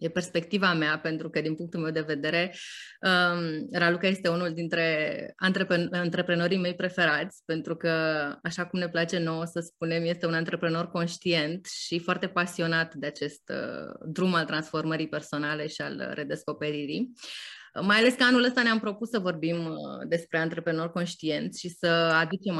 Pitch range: 155-180 Hz